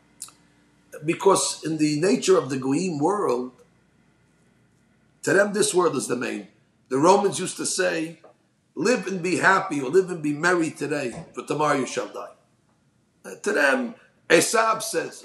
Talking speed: 155 wpm